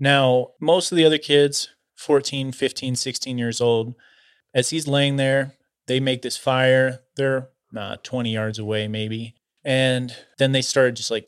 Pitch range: 115-140 Hz